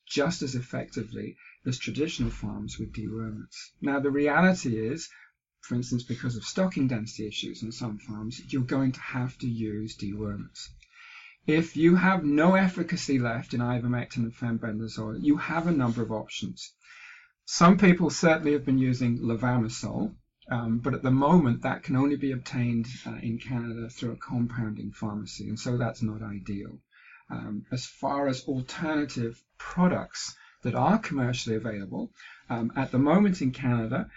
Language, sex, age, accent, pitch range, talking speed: English, male, 50-69, British, 115-140 Hz, 160 wpm